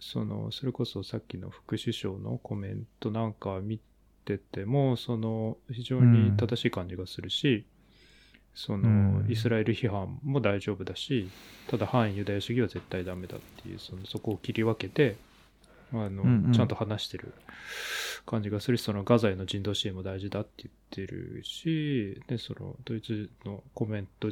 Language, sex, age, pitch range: Japanese, male, 20-39, 100-125 Hz